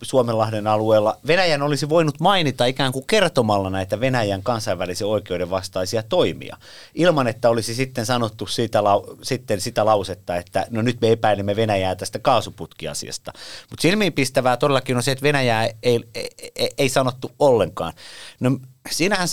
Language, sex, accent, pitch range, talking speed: Finnish, male, native, 100-130 Hz, 145 wpm